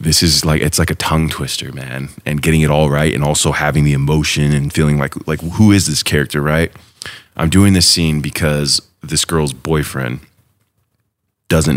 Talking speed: 190 wpm